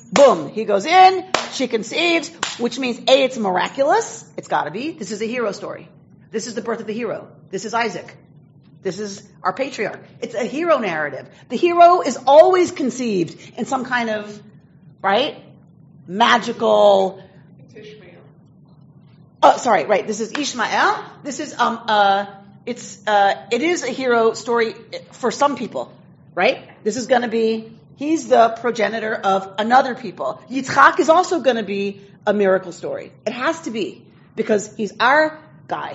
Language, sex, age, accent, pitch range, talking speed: English, female, 40-59, American, 185-260 Hz, 165 wpm